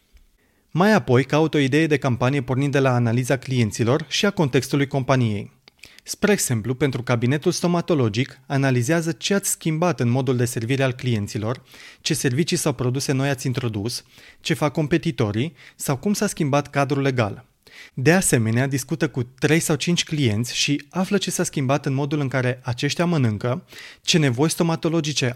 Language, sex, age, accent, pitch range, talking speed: Romanian, male, 30-49, native, 125-165 Hz, 165 wpm